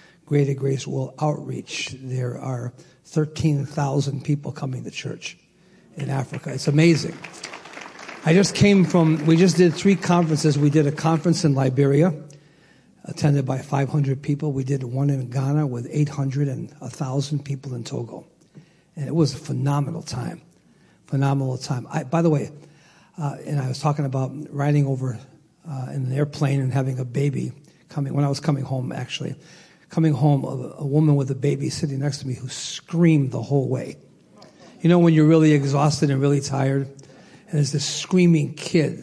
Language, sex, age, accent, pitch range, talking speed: English, male, 50-69, American, 140-165 Hz, 170 wpm